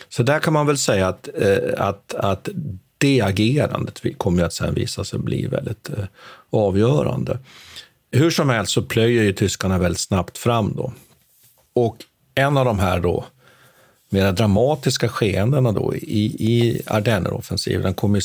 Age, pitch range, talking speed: 50-69, 100-130 Hz, 160 wpm